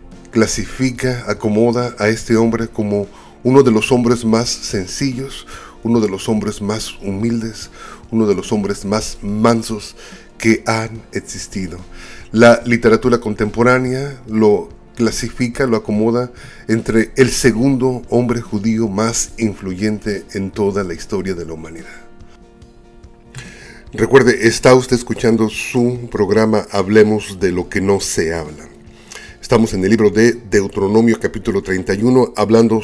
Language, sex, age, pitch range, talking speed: Spanish, male, 40-59, 100-120 Hz, 130 wpm